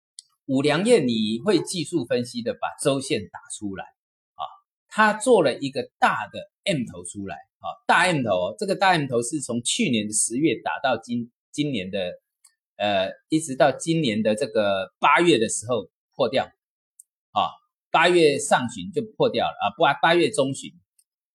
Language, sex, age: Chinese, male, 30-49